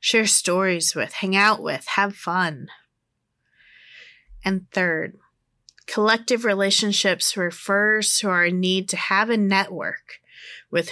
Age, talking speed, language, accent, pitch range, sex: 30-49, 115 wpm, English, American, 175-220 Hz, female